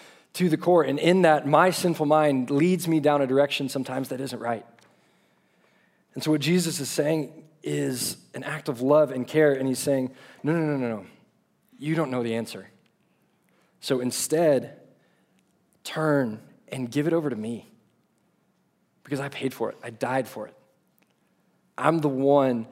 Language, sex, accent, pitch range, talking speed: English, male, American, 130-165 Hz, 170 wpm